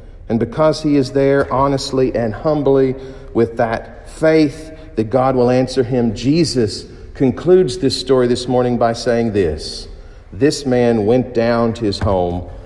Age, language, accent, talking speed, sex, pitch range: 50-69, English, American, 150 wpm, male, 95-125 Hz